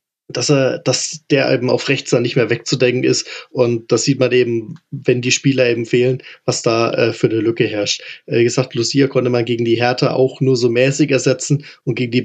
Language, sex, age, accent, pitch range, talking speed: German, male, 20-39, German, 125-150 Hz, 225 wpm